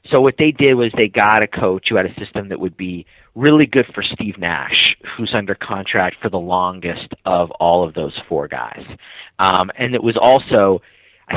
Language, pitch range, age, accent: English, 90-110 Hz, 30-49, American